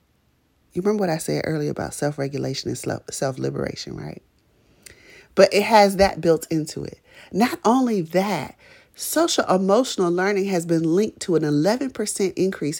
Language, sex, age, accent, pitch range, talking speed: English, female, 30-49, American, 180-265 Hz, 145 wpm